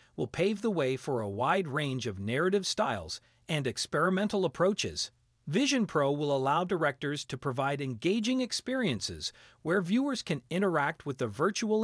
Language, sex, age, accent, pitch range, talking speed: Italian, male, 40-59, American, 120-185 Hz, 150 wpm